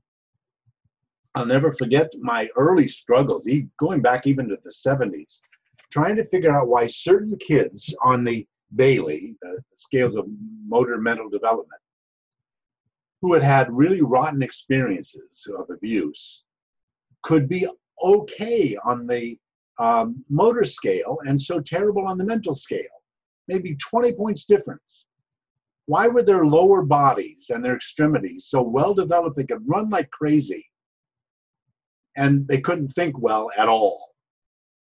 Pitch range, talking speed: 120-190 Hz, 135 wpm